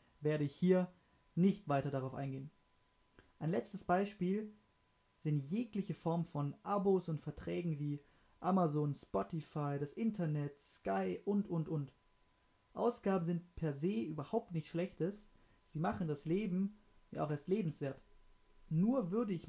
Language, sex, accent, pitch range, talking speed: German, male, German, 145-190 Hz, 135 wpm